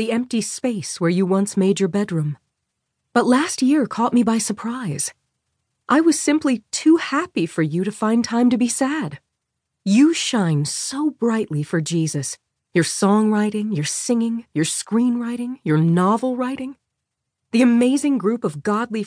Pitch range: 165-235 Hz